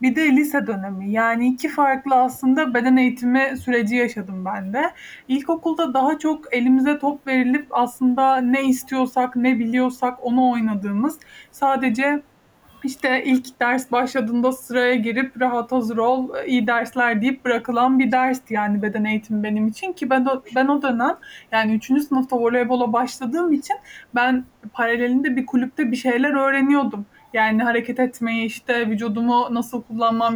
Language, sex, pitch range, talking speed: Turkish, male, 240-280 Hz, 145 wpm